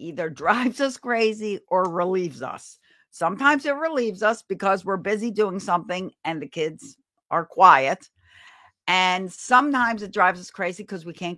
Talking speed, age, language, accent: 160 wpm, 50-69, English, American